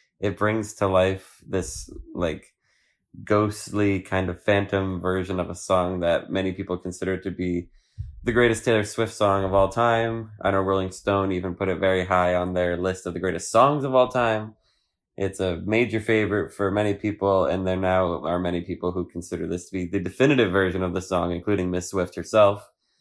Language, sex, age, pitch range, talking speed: English, male, 20-39, 90-110 Hz, 195 wpm